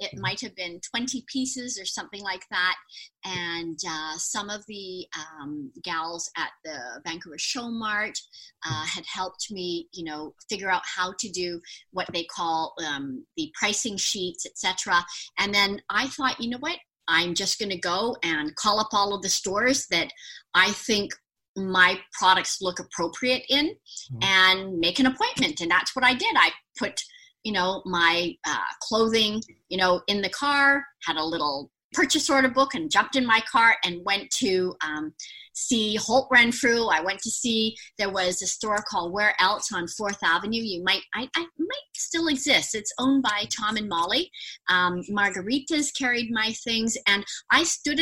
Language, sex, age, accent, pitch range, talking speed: English, female, 40-59, American, 180-255 Hz, 175 wpm